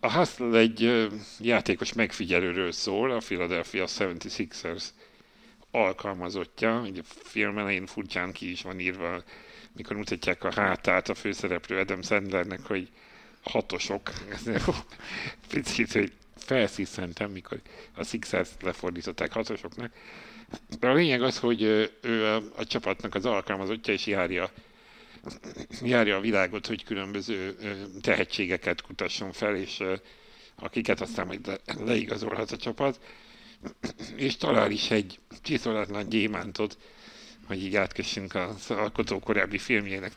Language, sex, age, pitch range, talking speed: Hungarian, male, 60-79, 100-115 Hz, 110 wpm